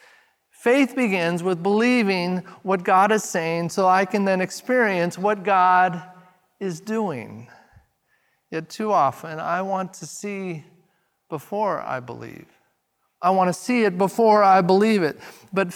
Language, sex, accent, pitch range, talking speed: English, male, American, 175-220 Hz, 140 wpm